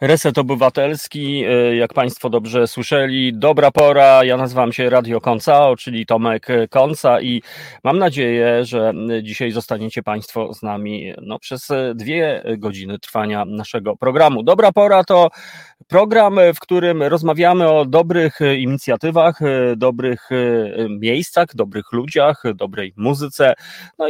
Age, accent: 30-49, native